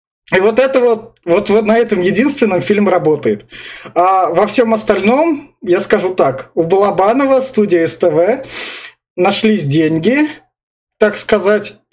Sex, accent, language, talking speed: male, native, Russian, 125 wpm